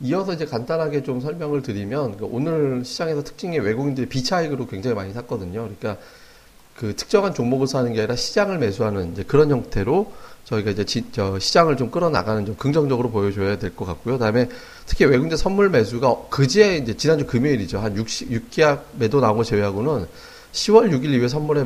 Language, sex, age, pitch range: Korean, male, 40-59, 110-145 Hz